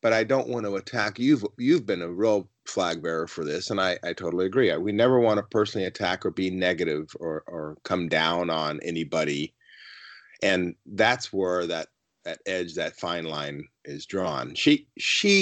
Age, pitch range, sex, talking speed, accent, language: 30-49, 90-115 Hz, male, 185 wpm, American, English